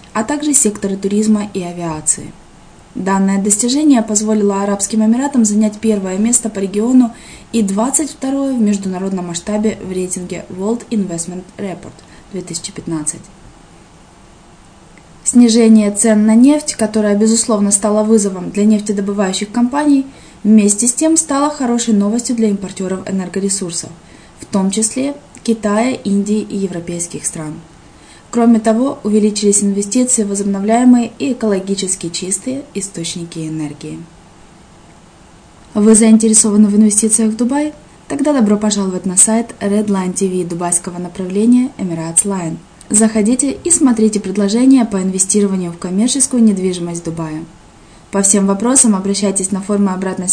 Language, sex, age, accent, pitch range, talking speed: Russian, female, 20-39, native, 185-225 Hz, 120 wpm